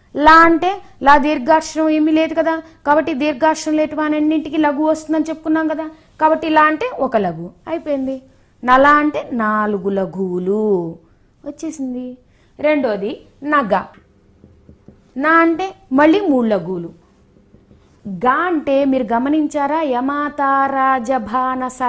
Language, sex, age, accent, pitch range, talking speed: Telugu, female, 30-49, native, 220-315 Hz, 105 wpm